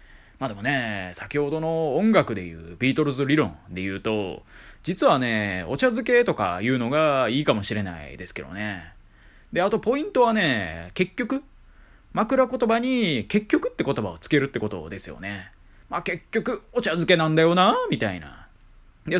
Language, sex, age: Japanese, male, 20-39